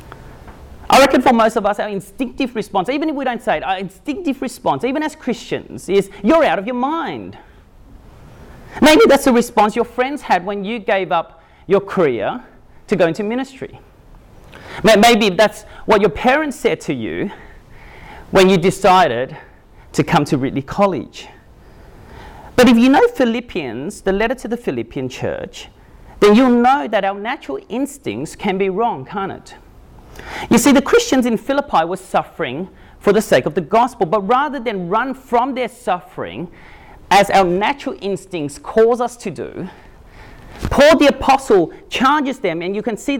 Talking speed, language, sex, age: 170 wpm, English, male, 30-49